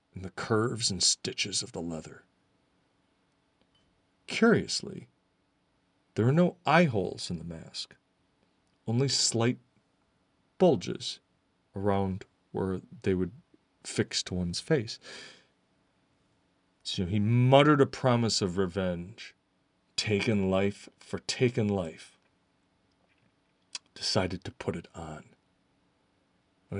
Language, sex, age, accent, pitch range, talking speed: English, male, 40-59, American, 95-125 Hz, 105 wpm